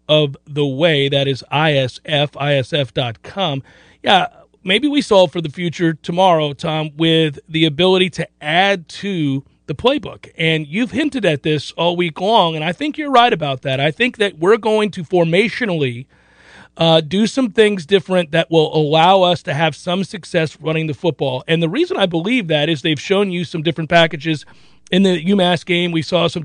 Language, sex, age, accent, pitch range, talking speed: English, male, 40-59, American, 165-210 Hz, 185 wpm